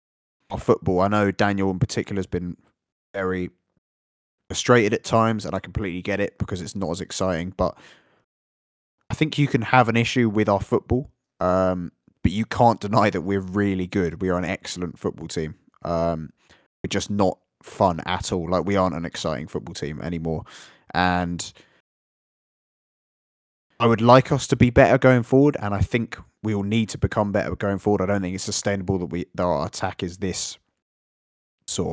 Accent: British